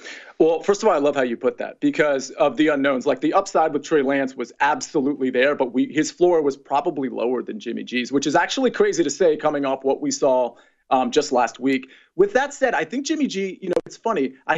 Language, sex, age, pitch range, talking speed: English, male, 40-59, 135-190 Hz, 245 wpm